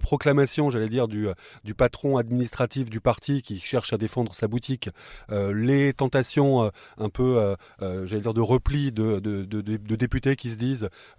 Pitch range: 110-135 Hz